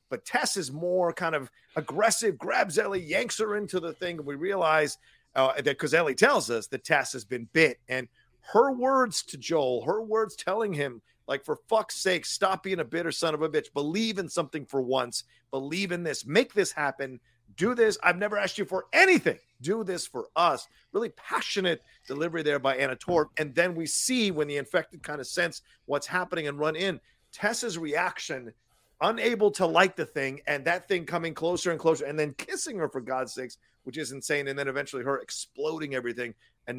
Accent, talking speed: American, 205 wpm